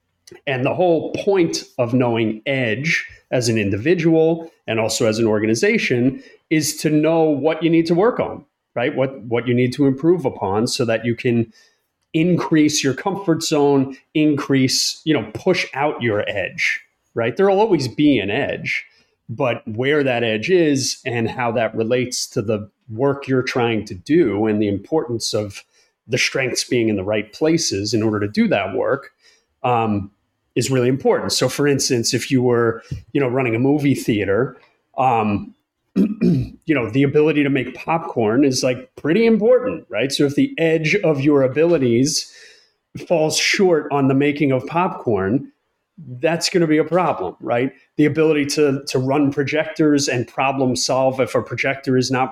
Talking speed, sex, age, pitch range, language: 170 wpm, male, 30-49, 120-155 Hz, English